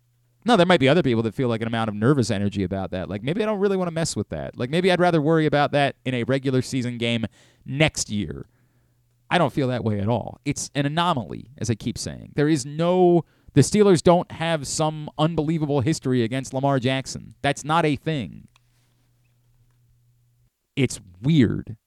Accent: American